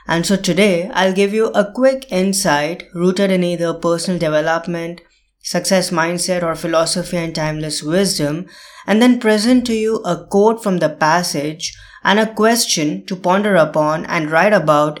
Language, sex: English, female